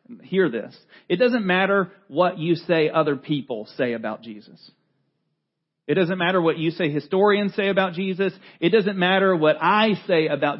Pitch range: 170-230 Hz